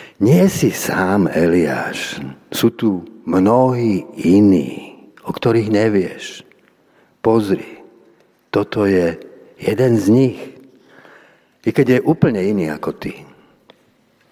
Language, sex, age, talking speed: Slovak, male, 60-79, 100 wpm